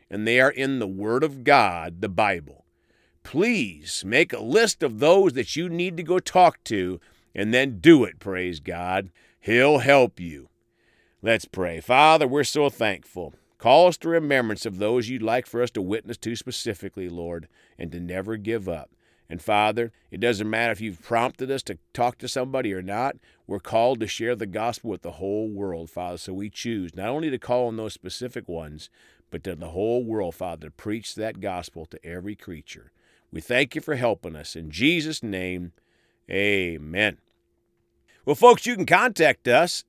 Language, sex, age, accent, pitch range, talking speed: English, male, 50-69, American, 95-135 Hz, 185 wpm